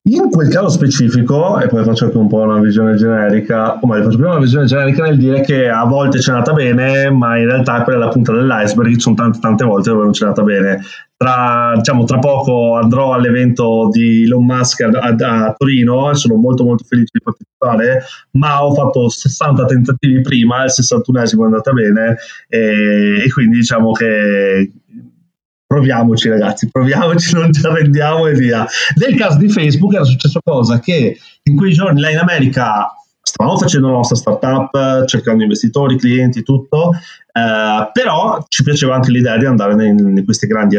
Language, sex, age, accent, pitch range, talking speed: Italian, male, 30-49, native, 110-140 Hz, 180 wpm